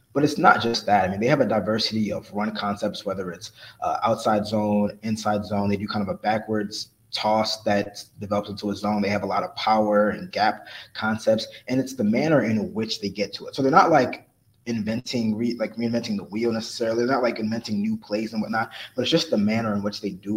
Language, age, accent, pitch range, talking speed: English, 20-39, American, 110-125 Hz, 235 wpm